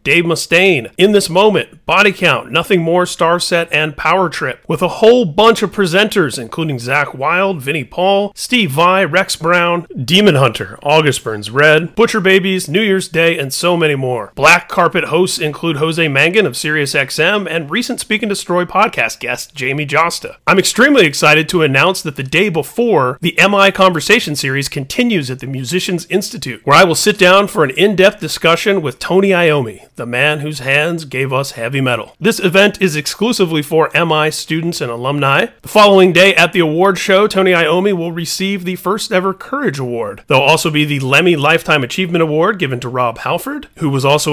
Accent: American